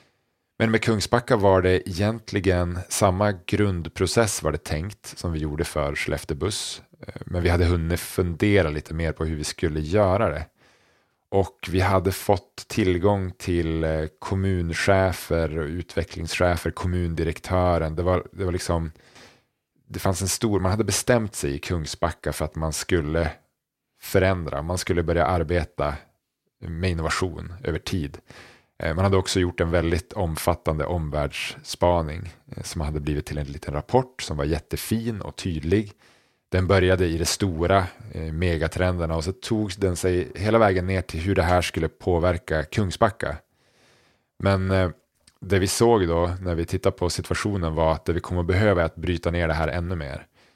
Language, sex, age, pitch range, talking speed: Swedish, male, 30-49, 80-100 Hz, 155 wpm